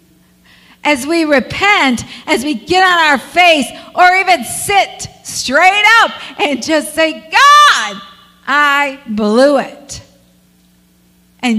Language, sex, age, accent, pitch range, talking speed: English, female, 50-69, American, 190-295 Hz, 115 wpm